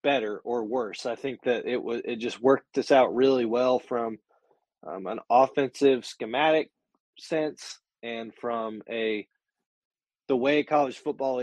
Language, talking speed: English, 145 wpm